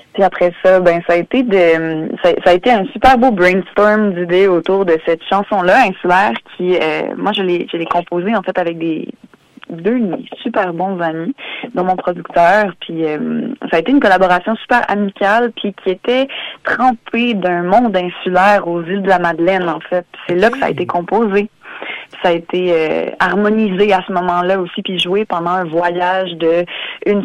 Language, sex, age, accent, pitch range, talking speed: French, female, 20-39, Canadian, 170-200 Hz, 195 wpm